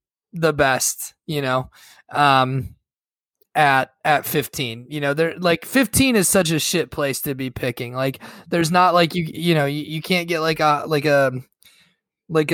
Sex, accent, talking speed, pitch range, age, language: male, American, 175 wpm, 130-155 Hz, 20-39, English